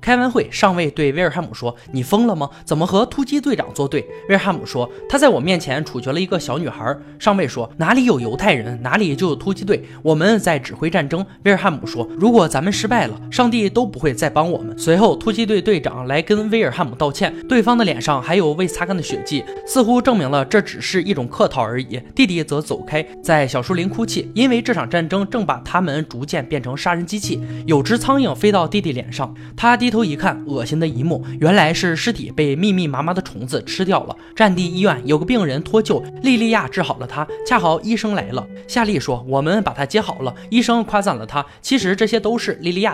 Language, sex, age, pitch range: Chinese, male, 20-39, 145-220 Hz